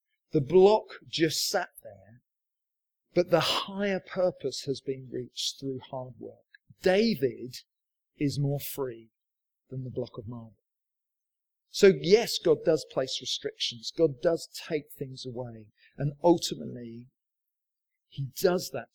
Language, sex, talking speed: English, male, 125 wpm